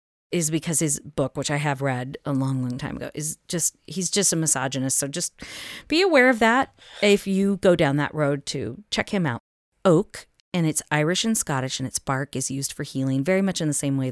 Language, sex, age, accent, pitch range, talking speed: English, female, 30-49, American, 135-165 Hz, 230 wpm